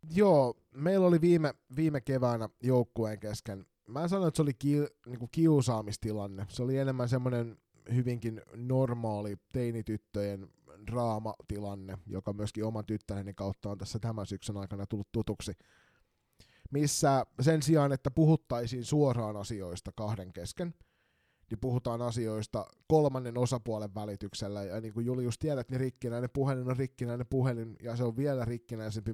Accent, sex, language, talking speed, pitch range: native, male, Finnish, 135 wpm, 105-130 Hz